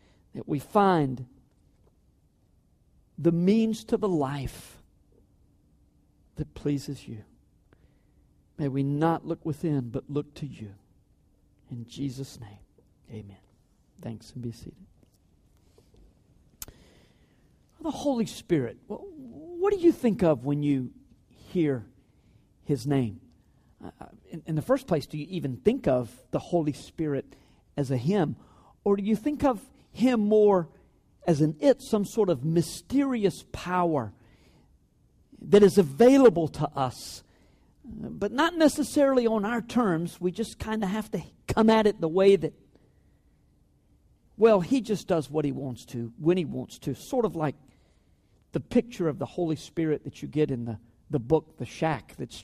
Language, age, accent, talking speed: English, 50-69, American, 145 wpm